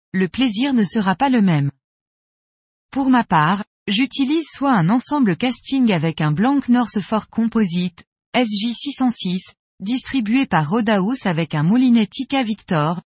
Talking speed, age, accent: 135 wpm, 20-39, French